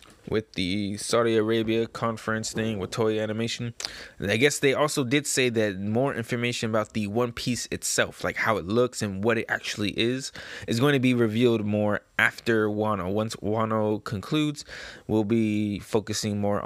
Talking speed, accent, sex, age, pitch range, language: 175 wpm, American, male, 20-39, 100-115 Hz, English